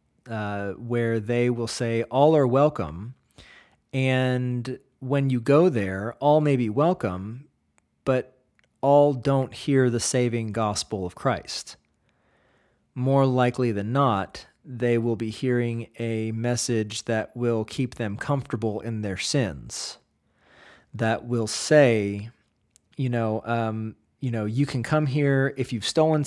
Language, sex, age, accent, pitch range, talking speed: English, male, 40-59, American, 110-135 Hz, 130 wpm